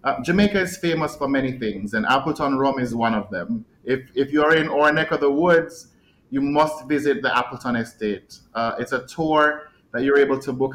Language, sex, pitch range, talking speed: English, male, 125-150 Hz, 220 wpm